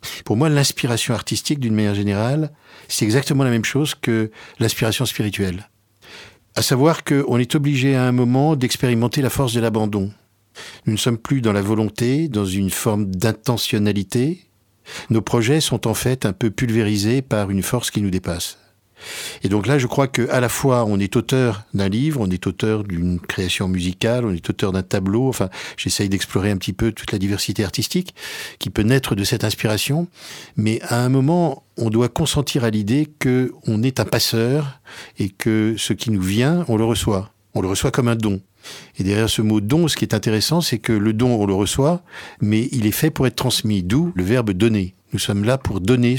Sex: male